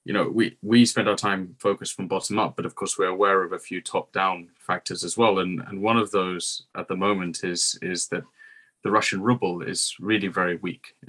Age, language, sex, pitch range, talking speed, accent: 20-39, English, male, 90-110 Hz, 225 wpm, British